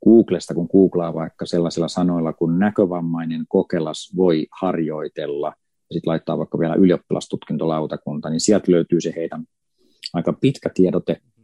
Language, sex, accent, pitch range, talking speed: Finnish, male, native, 85-95 Hz, 130 wpm